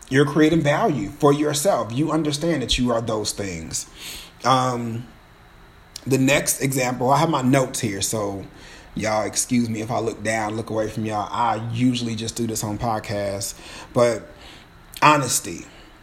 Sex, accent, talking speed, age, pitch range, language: male, American, 155 wpm, 30-49, 110-145 Hz, English